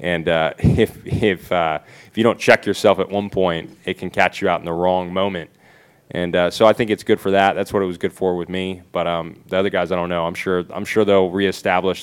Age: 20-39